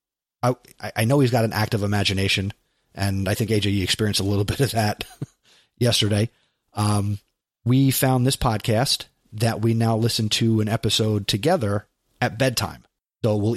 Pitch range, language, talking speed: 105-125 Hz, English, 160 wpm